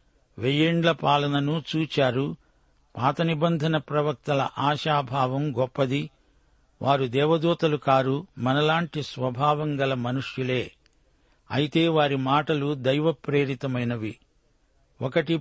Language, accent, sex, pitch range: Telugu, native, male, 135-155 Hz